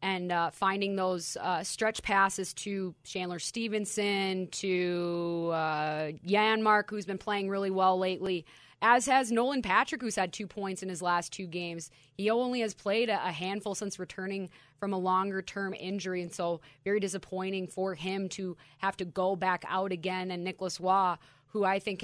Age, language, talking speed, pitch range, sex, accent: 20-39, English, 175 wpm, 175-195 Hz, female, American